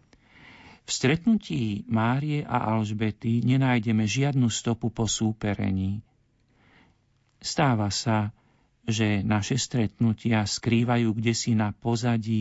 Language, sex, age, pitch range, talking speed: Slovak, male, 50-69, 105-120 Hz, 95 wpm